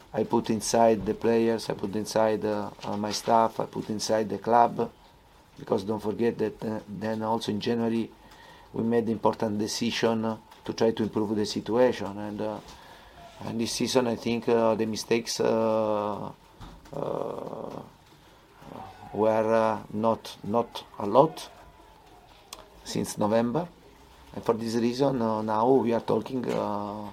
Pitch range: 105-115 Hz